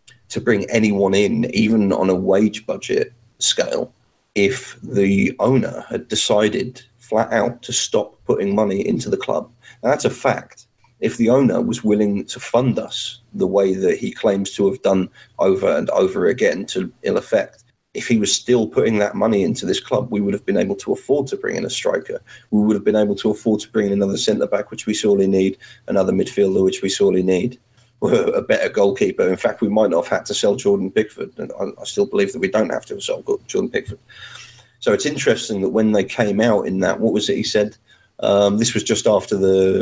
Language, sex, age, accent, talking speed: English, male, 30-49, British, 220 wpm